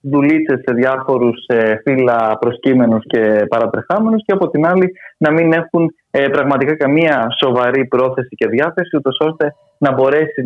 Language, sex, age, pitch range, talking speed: Greek, male, 20-39, 125-155 Hz, 140 wpm